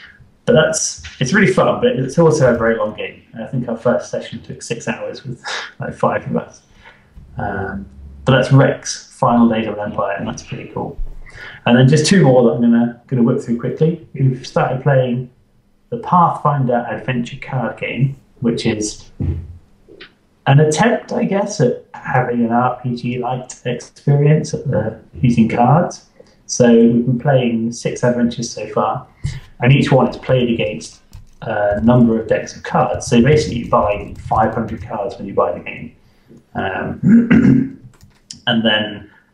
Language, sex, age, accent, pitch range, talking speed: English, male, 30-49, British, 105-130 Hz, 165 wpm